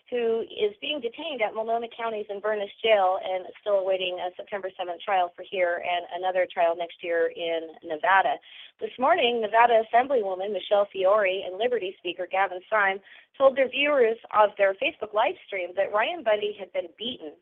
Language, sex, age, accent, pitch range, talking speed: English, female, 30-49, American, 190-240 Hz, 180 wpm